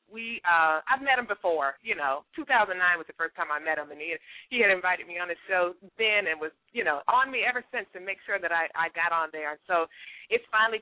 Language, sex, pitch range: English, female, 180-255 Hz